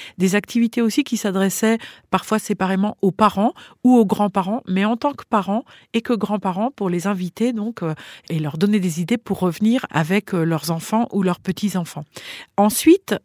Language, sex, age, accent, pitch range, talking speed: French, female, 40-59, French, 165-225 Hz, 170 wpm